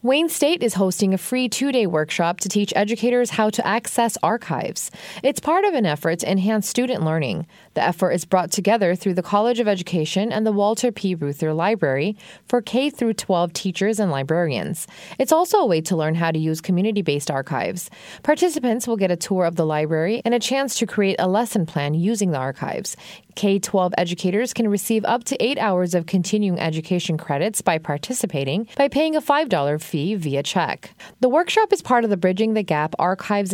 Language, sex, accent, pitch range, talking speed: English, female, American, 165-230 Hz, 190 wpm